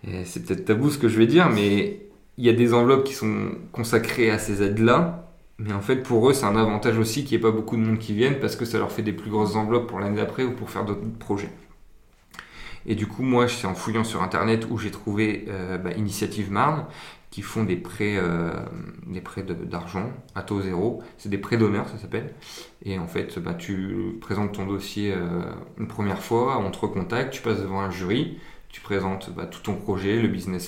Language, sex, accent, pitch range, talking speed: French, male, French, 95-115 Hz, 230 wpm